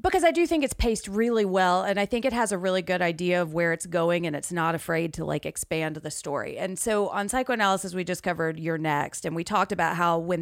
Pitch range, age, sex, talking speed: 170-210 Hz, 30-49, female, 260 wpm